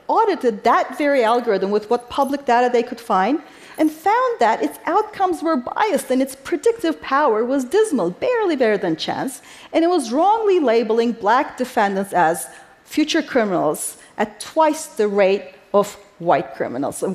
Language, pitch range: Korean, 220-320 Hz